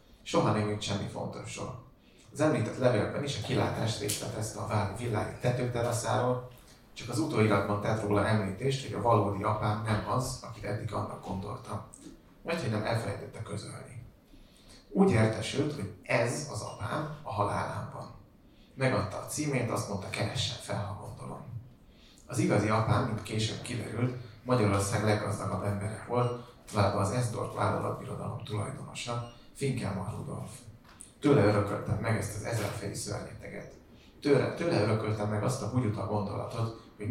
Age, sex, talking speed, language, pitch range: 30-49, male, 140 wpm, Hungarian, 105-125 Hz